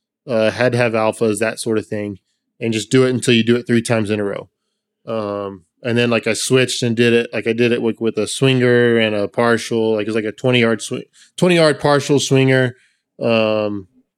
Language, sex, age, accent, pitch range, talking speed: English, male, 20-39, American, 115-140 Hz, 235 wpm